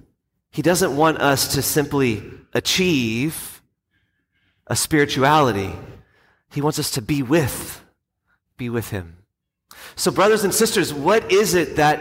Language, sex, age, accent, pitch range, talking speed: English, male, 30-49, American, 125-165 Hz, 130 wpm